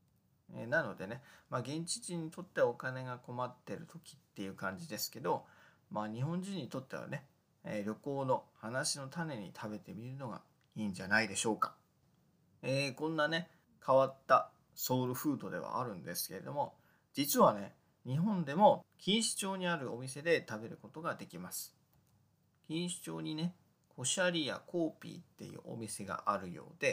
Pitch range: 120-175 Hz